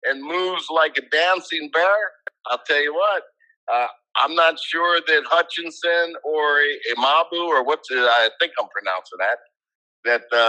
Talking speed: 155 wpm